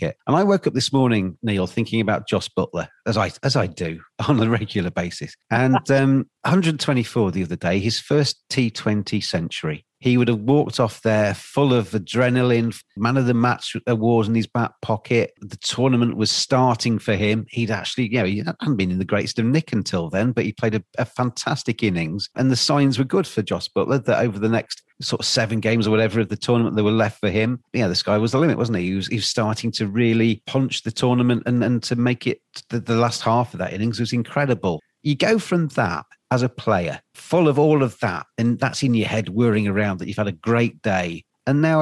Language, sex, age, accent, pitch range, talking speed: English, male, 40-59, British, 105-125 Hz, 230 wpm